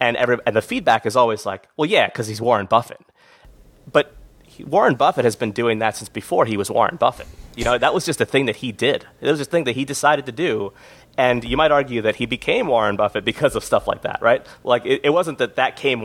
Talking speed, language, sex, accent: 260 wpm, English, male, American